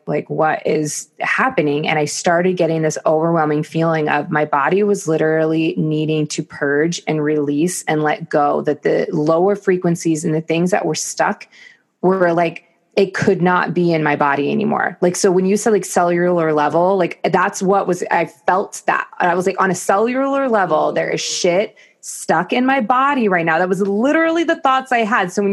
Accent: American